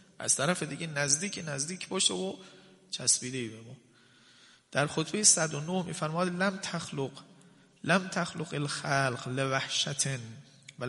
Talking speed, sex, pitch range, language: 115 wpm, male, 140-180 Hz, Persian